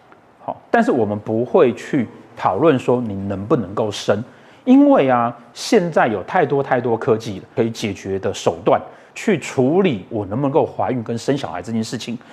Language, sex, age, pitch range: Chinese, male, 30-49, 110-145 Hz